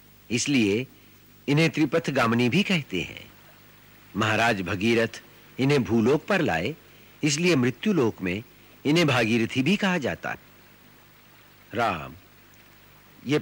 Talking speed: 105 wpm